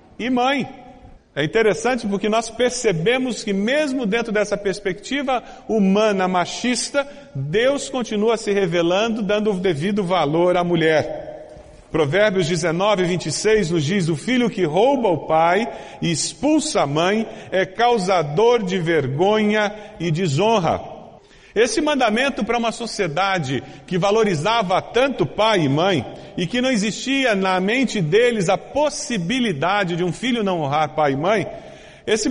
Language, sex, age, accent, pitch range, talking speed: Portuguese, male, 40-59, Brazilian, 175-230 Hz, 135 wpm